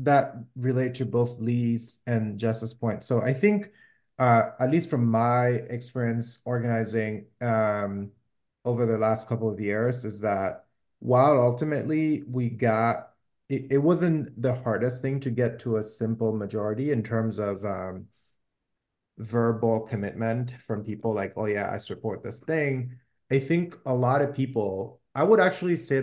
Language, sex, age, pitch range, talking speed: English, male, 20-39, 110-125 Hz, 155 wpm